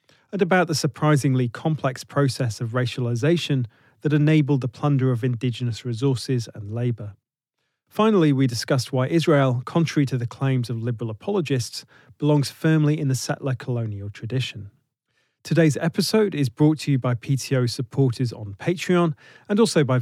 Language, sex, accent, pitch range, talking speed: English, male, British, 125-150 Hz, 150 wpm